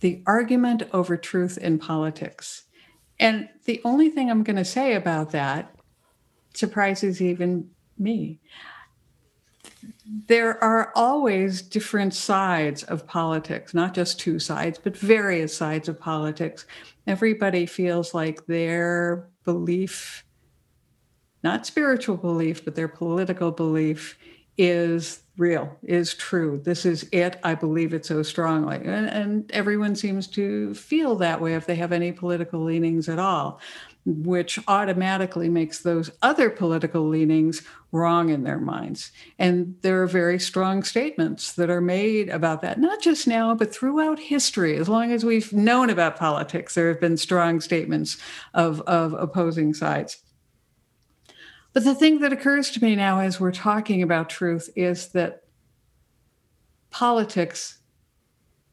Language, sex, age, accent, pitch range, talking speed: English, female, 60-79, American, 165-210 Hz, 135 wpm